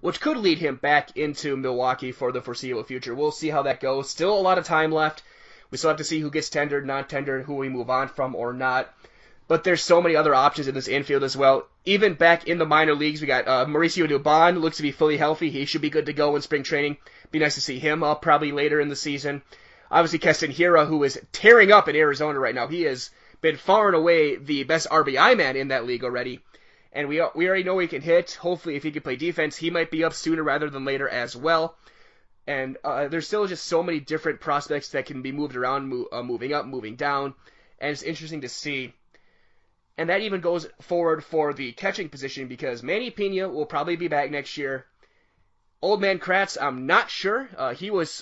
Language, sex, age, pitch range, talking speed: English, male, 20-39, 140-170 Hz, 235 wpm